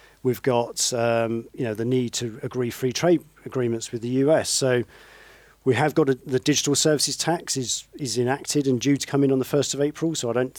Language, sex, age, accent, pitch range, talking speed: English, male, 40-59, British, 110-130 Hz, 225 wpm